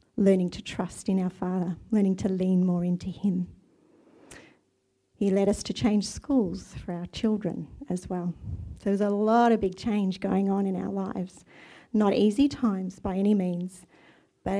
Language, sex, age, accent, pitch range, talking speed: English, female, 40-59, Australian, 185-215 Hz, 175 wpm